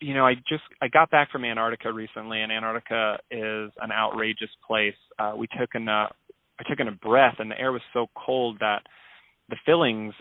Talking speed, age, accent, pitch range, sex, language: 200 wpm, 30-49, American, 110-140 Hz, male, English